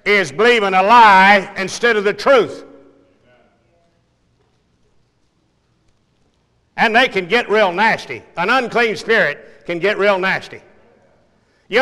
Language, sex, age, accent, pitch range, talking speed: English, male, 60-79, American, 190-235 Hz, 110 wpm